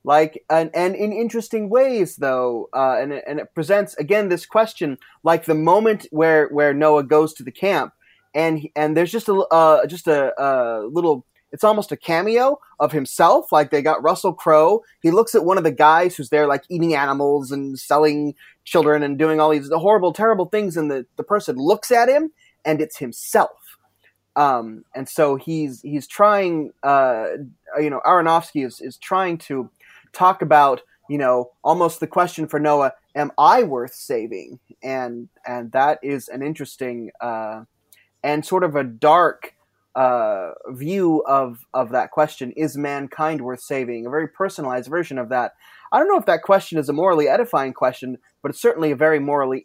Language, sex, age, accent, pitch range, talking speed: English, male, 20-39, American, 130-170 Hz, 180 wpm